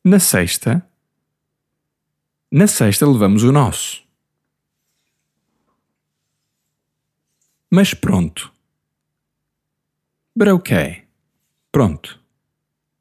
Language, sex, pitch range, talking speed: English, male, 100-145 Hz, 55 wpm